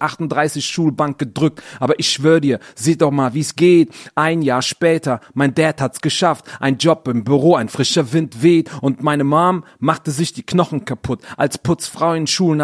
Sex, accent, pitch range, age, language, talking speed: male, German, 140-160 Hz, 30-49, German, 190 wpm